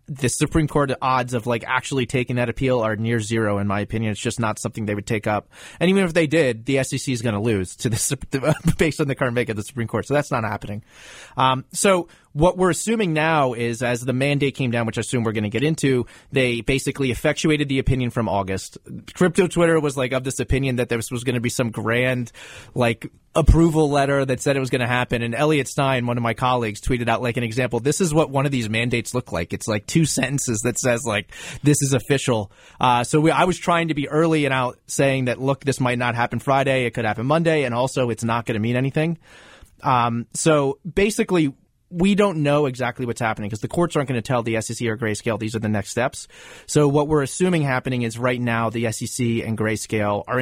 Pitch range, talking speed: 115-145 Hz, 245 wpm